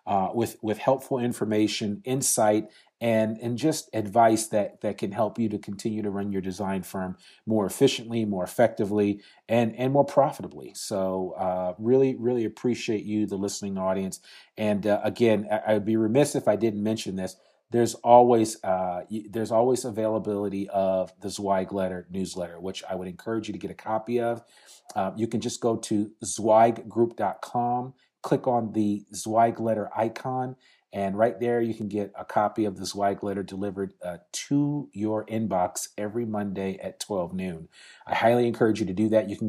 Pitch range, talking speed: 100-115 Hz, 180 wpm